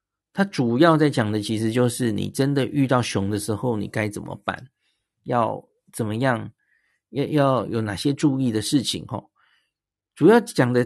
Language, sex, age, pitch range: Chinese, male, 50-69, 115-150 Hz